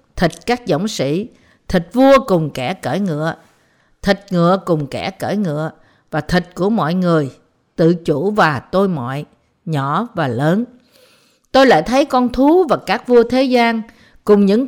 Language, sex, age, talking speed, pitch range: Vietnamese, female, 50-69, 170 wpm, 160-235 Hz